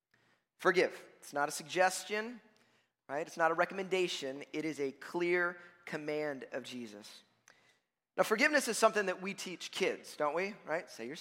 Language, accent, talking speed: English, American, 160 wpm